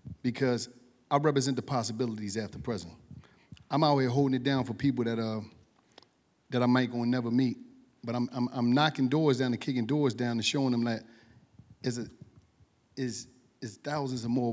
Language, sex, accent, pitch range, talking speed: English, male, American, 115-140 Hz, 190 wpm